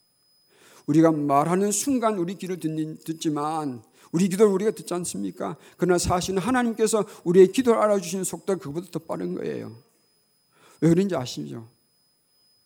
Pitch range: 125-185 Hz